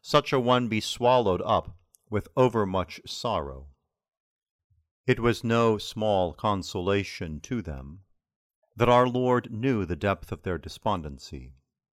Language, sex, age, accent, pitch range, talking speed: English, male, 40-59, American, 90-120 Hz, 125 wpm